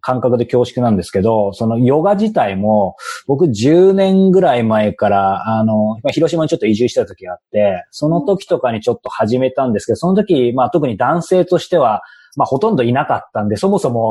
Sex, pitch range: male, 110-165 Hz